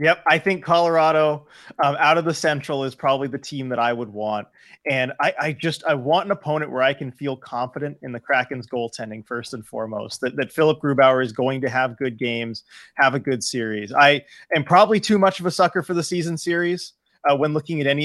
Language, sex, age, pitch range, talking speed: English, male, 30-49, 125-155 Hz, 225 wpm